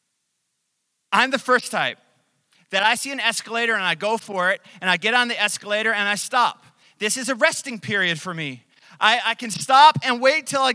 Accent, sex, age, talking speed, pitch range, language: American, male, 30-49, 210 wpm, 185-265 Hz, English